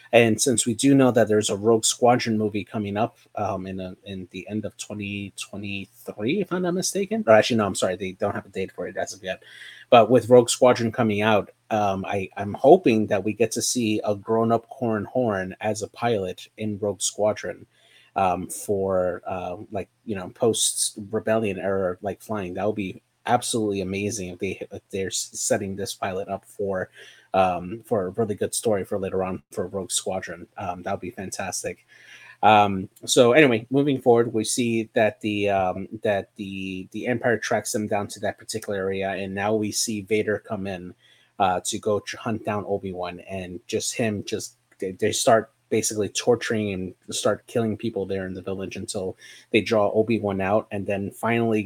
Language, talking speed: English, 195 wpm